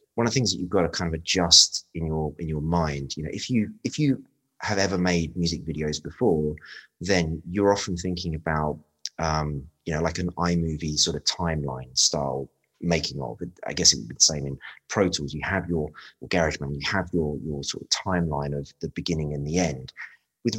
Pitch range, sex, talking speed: 75-90 Hz, male, 215 wpm